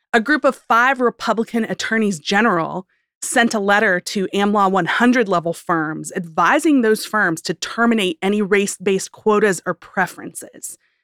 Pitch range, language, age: 185-255 Hz, English, 30-49